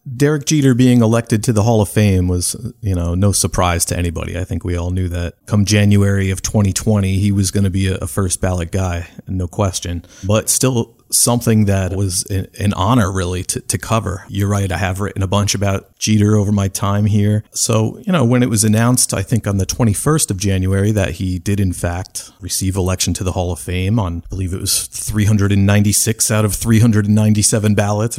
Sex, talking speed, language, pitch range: male, 205 wpm, English, 95-115 Hz